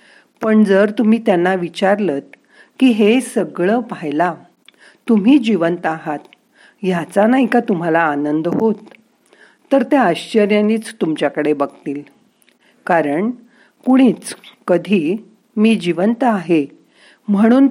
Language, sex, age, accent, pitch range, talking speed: Marathi, female, 50-69, native, 160-230 Hz, 100 wpm